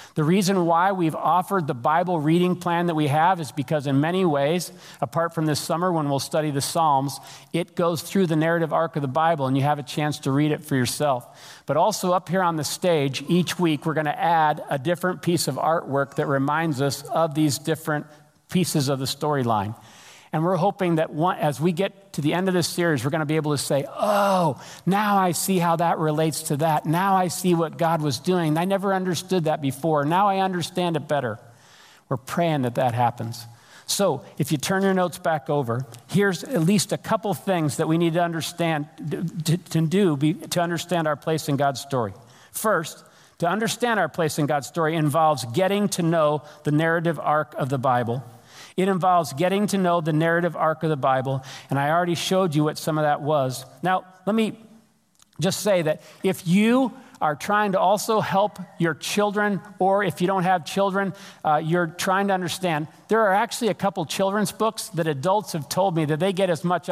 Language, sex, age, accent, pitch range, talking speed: English, male, 50-69, American, 150-185 Hz, 210 wpm